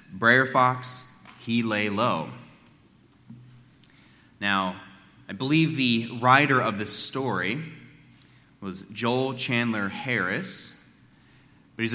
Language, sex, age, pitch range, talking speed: English, male, 30-49, 100-130 Hz, 95 wpm